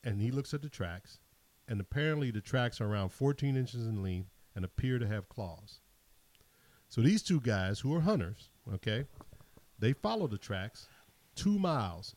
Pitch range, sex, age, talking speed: 100-125 Hz, male, 50-69, 175 wpm